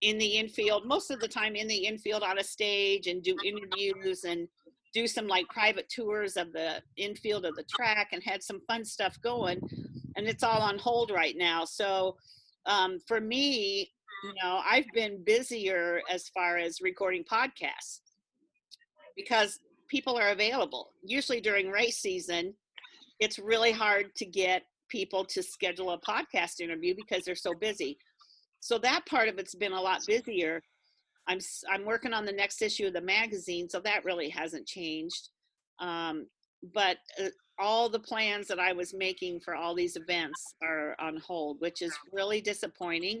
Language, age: English, 50-69